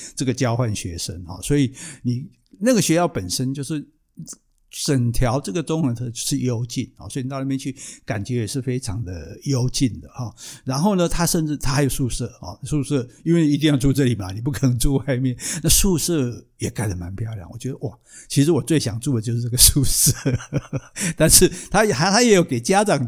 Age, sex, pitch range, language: 60-79, male, 120-150 Hz, Chinese